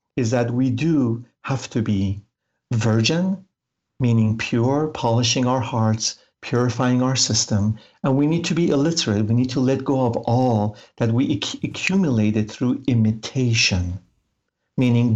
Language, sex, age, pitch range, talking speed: English, male, 50-69, 110-135 Hz, 140 wpm